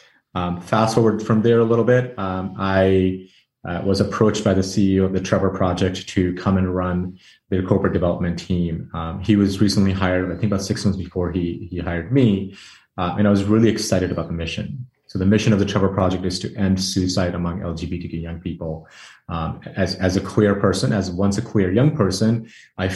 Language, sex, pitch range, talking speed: English, male, 90-100 Hz, 210 wpm